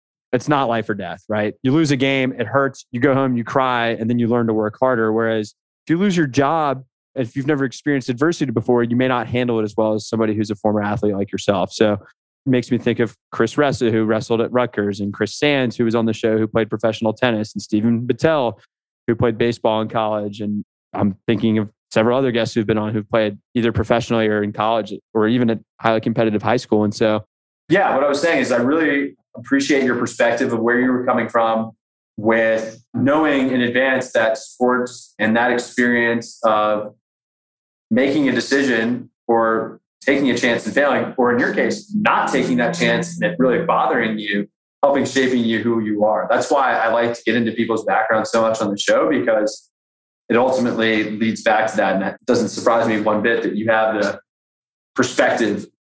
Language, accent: English, American